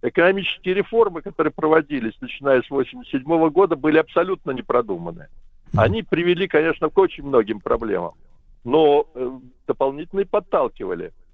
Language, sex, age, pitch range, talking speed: Russian, male, 60-79, 145-225 Hz, 115 wpm